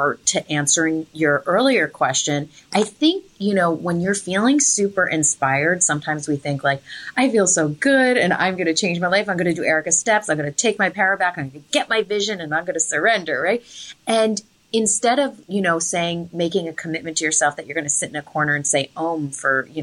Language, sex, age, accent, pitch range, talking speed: English, female, 30-49, American, 150-195 Hz, 235 wpm